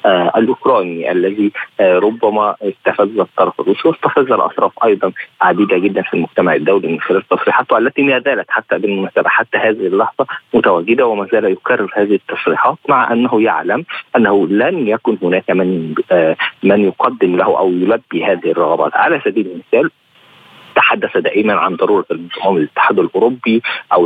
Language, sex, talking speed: Arabic, male, 145 wpm